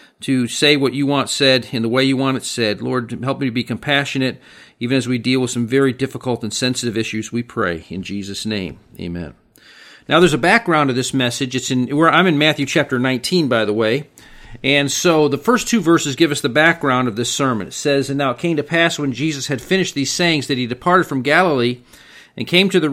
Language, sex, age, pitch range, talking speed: English, male, 50-69, 125-155 Hz, 235 wpm